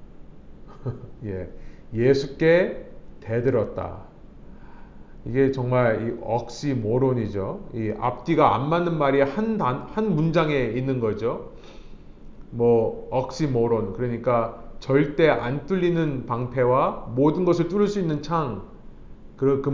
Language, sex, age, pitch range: Korean, male, 40-59, 120-155 Hz